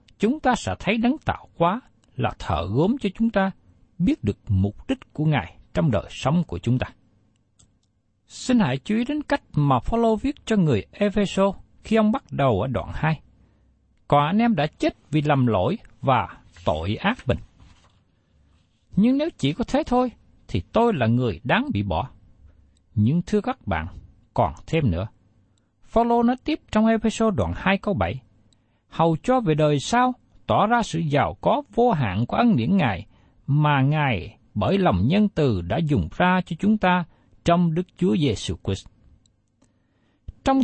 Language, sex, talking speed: Vietnamese, male, 175 wpm